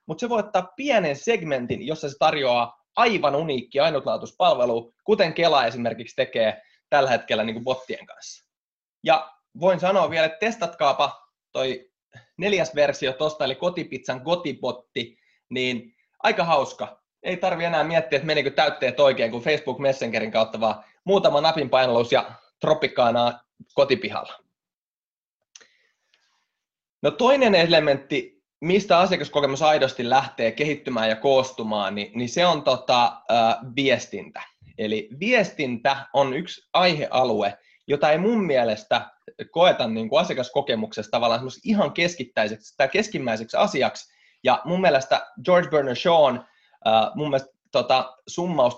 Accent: native